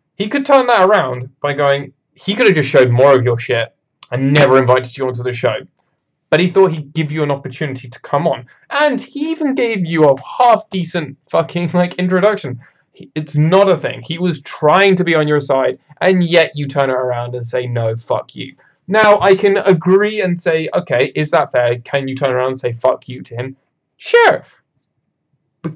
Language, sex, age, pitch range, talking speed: English, male, 20-39, 125-170 Hz, 205 wpm